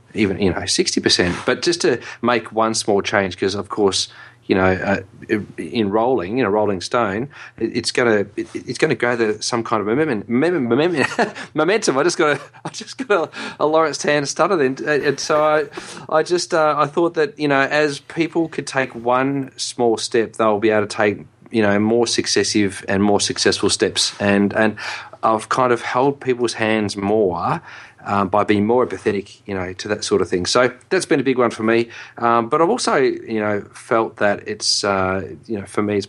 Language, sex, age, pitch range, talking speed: English, male, 30-49, 100-120 Hz, 200 wpm